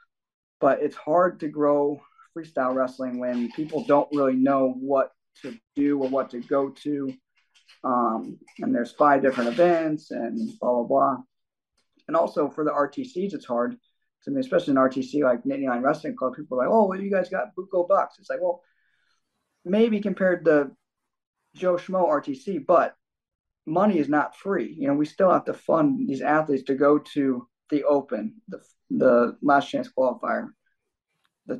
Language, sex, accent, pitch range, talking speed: English, male, American, 135-190 Hz, 180 wpm